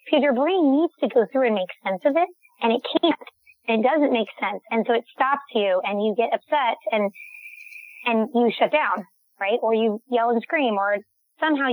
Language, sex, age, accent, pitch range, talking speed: English, female, 20-39, American, 225-275 Hz, 215 wpm